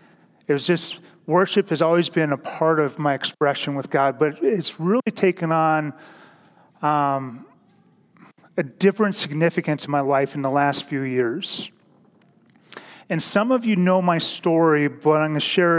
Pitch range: 140-165 Hz